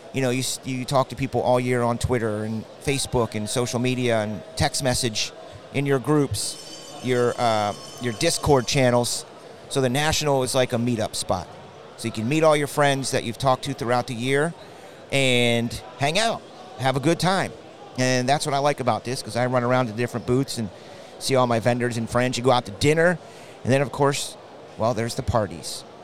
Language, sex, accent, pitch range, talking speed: English, male, American, 110-135 Hz, 205 wpm